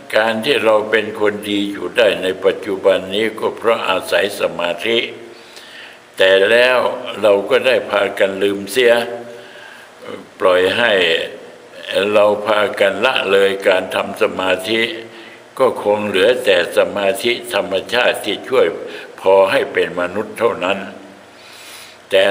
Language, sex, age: Thai, male, 60-79